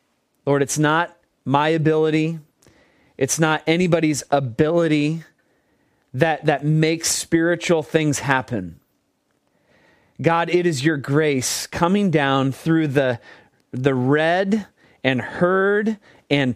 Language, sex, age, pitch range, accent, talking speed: English, male, 30-49, 130-175 Hz, American, 105 wpm